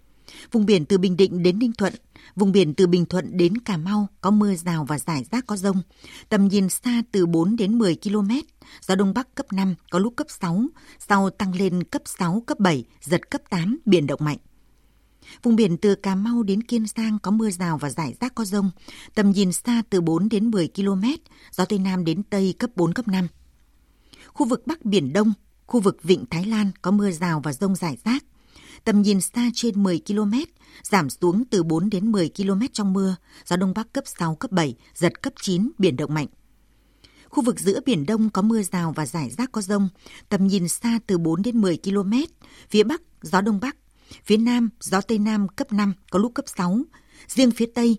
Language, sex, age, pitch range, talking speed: Vietnamese, female, 60-79, 180-230 Hz, 215 wpm